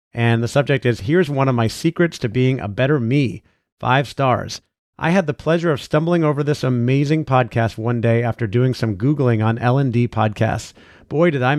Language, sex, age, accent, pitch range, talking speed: English, male, 40-59, American, 115-140 Hz, 205 wpm